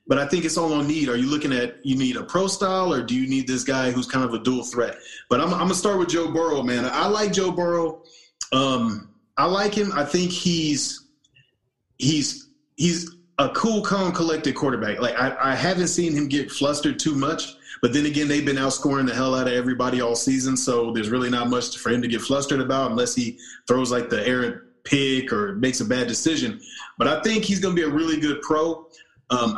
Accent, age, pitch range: American, 30-49, 125-160 Hz